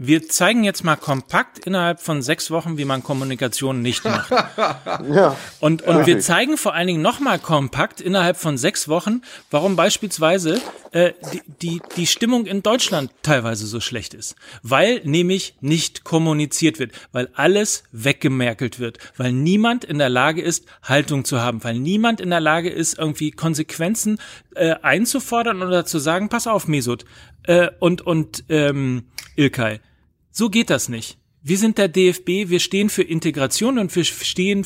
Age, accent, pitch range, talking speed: 40-59, German, 135-185 Hz, 165 wpm